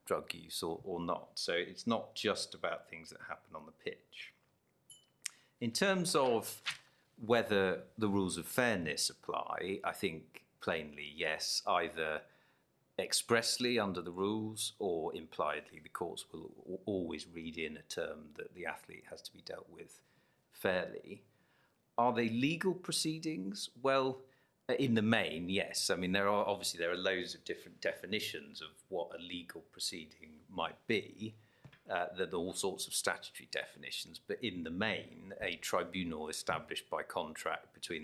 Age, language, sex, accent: 40-59, English, male, British